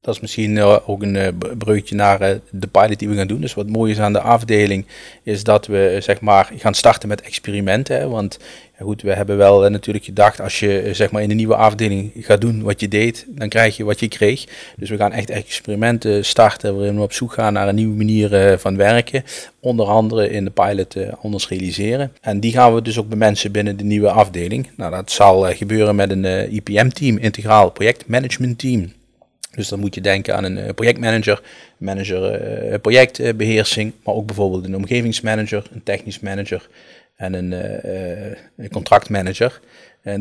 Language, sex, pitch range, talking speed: Dutch, male, 100-115 Hz, 175 wpm